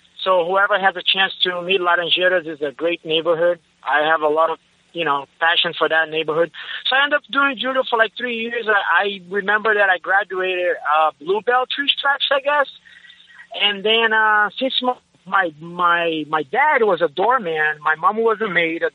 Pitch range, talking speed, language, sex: 170-230 Hz, 195 wpm, English, male